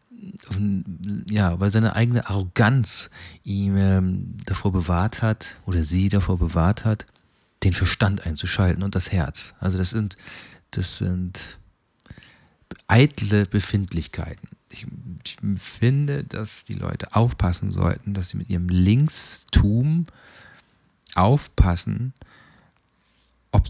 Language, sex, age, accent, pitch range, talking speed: German, male, 40-59, German, 90-110 Hz, 105 wpm